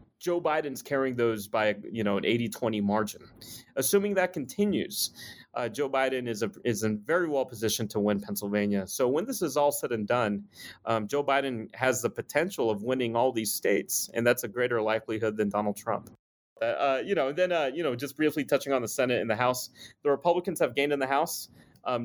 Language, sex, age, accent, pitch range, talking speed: English, male, 30-49, American, 105-130 Hz, 215 wpm